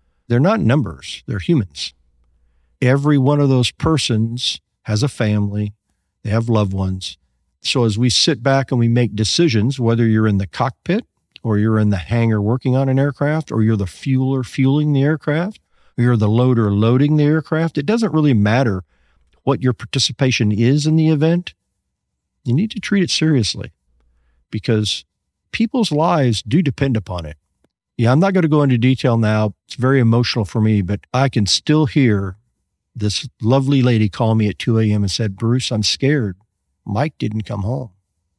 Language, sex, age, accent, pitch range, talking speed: English, male, 50-69, American, 100-135 Hz, 180 wpm